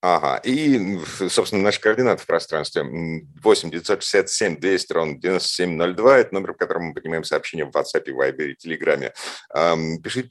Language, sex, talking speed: Russian, male, 140 wpm